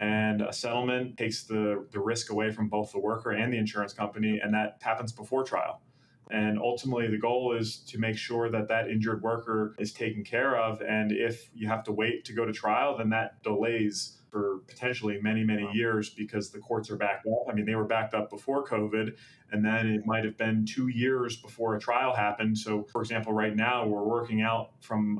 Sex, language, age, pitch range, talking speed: male, English, 30-49, 105-120 Hz, 210 wpm